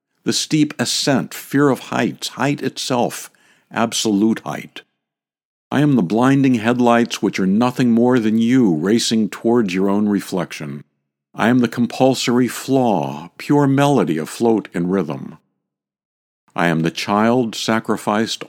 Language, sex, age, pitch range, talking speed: English, male, 60-79, 90-125 Hz, 135 wpm